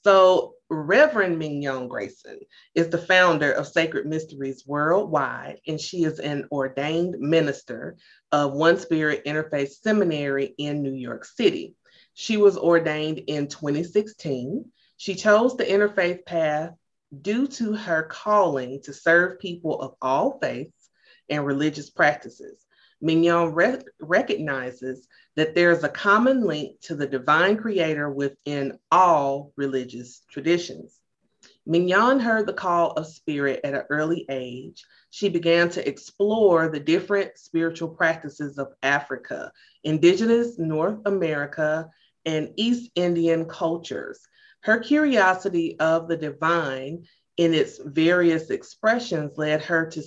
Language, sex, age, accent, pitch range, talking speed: English, female, 30-49, American, 145-185 Hz, 125 wpm